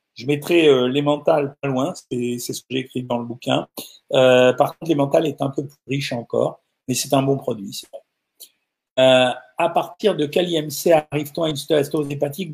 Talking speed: 195 wpm